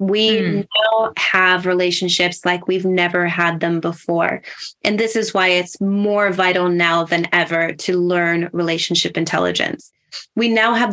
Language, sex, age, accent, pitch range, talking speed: English, female, 20-39, American, 175-225 Hz, 150 wpm